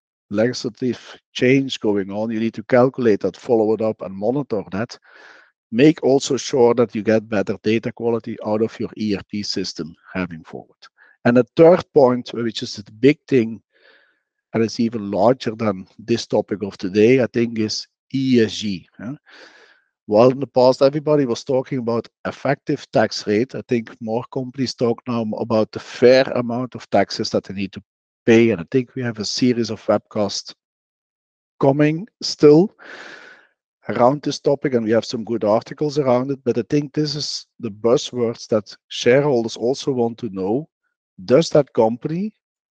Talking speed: 170 wpm